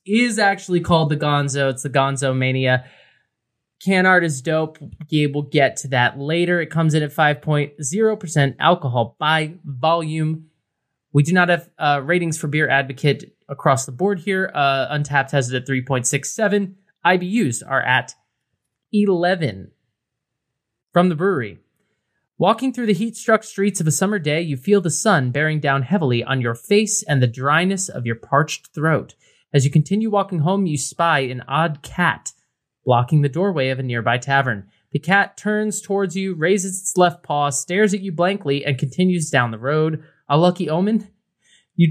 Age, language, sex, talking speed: 20-39, English, male, 170 wpm